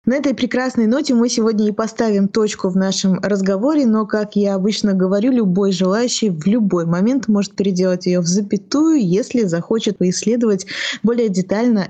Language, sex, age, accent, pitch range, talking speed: Russian, female, 20-39, native, 185-230 Hz, 160 wpm